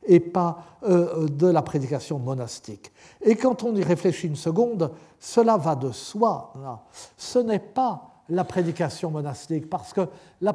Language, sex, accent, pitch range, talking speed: French, male, French, 155-210 Hz, 155 wpm